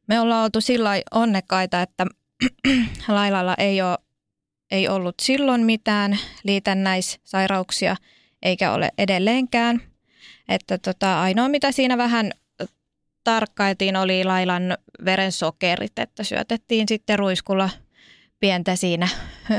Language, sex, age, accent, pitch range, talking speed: Finnish, female, 20-39, native, 185-225 Hz, 100 wpm